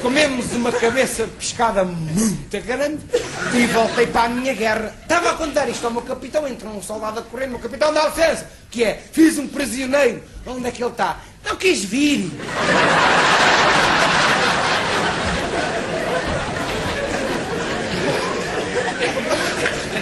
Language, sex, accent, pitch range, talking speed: Portuguese, male, Portuguese, 215-260 Hz, 125 wpm